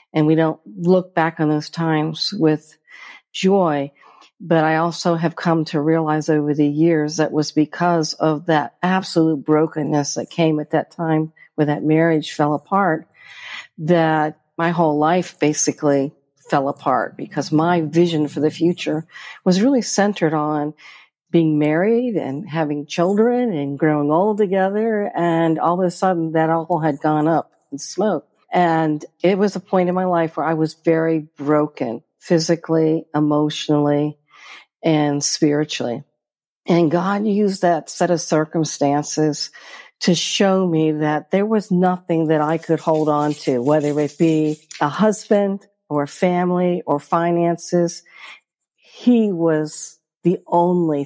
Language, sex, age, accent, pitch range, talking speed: English, female, 50-69, American, 150-175 Hz, 150 wpm